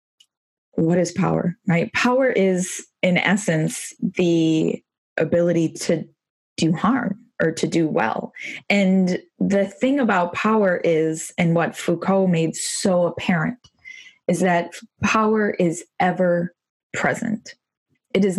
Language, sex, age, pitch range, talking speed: English, female, 20-39, 160-195 Hz, 120 wpm